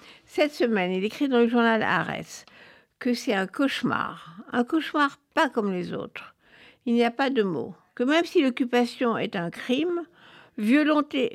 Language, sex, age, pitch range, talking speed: French, female, 60-79, 210-275 Hz, 170 wpm